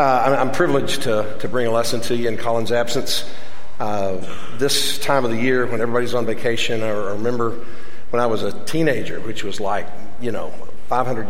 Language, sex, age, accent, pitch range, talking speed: English, male, 50-69, American, 115-145 Hz, 190 wpm